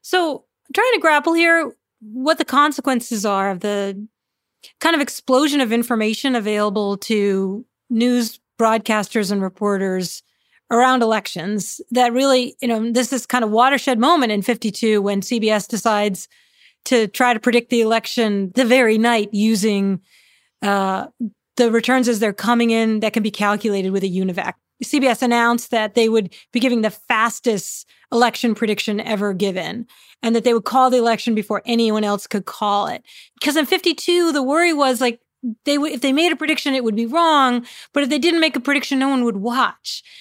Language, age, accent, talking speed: English, 40-59, American, 175 wpm